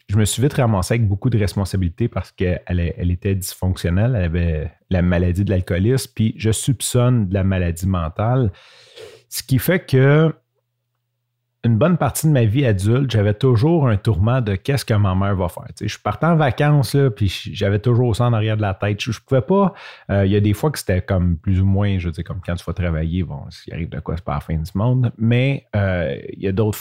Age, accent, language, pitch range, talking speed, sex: 30-49, Canadian, French, 95-125 Hz, 230 wpm, male